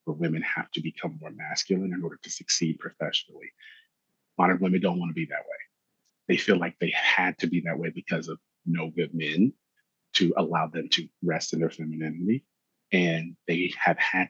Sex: male